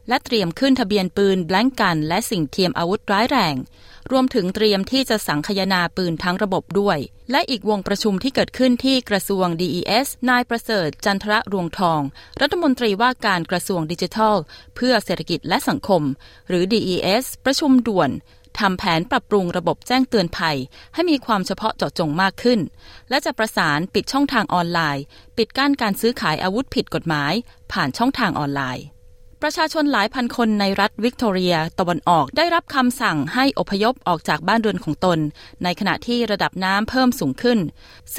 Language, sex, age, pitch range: Thai, female, 20-39, 180-235 Hz